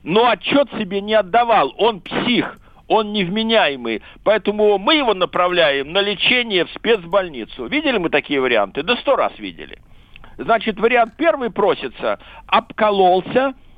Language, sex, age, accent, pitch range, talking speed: Russian, male, 60-79, native, 180-240 Hz, 130 wpm